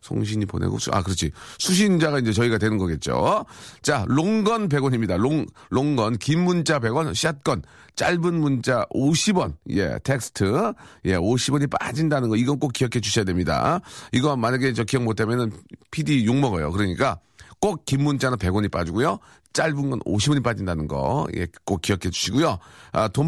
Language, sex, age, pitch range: Korean, male, 40-59, 105-155 Hz